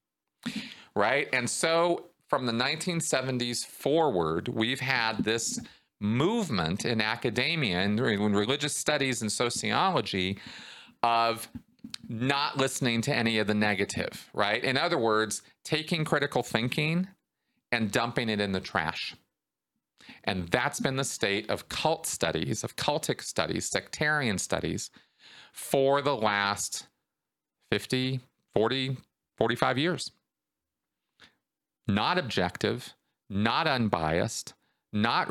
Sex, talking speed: male, 110 wpm